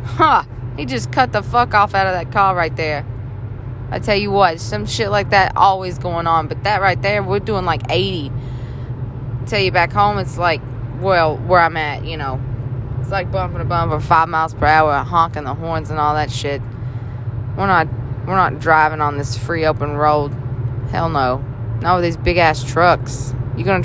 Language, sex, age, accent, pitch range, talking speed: English, female, 20-39, American, 120-160 Hz, 210 wpm